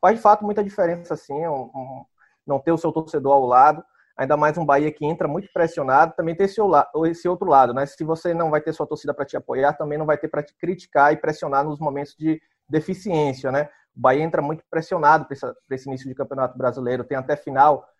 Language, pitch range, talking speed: Portuguese, 140-165 Hz, 230 wpm